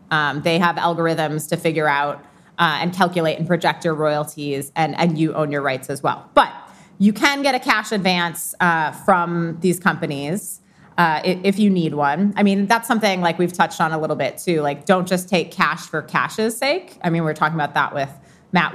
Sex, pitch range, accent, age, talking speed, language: female, 160-195 Hz, American, 30-49, 210 wpm, English